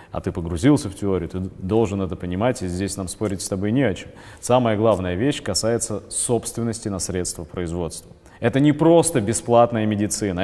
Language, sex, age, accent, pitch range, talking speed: Russian, male, 30-49, native, 95-130 Hz, 180 wpm